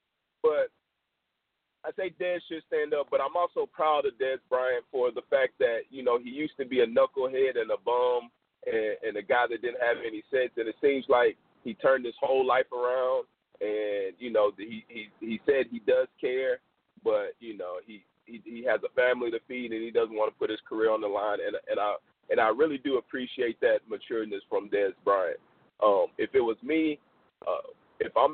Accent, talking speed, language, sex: American, 215 wpm, English, male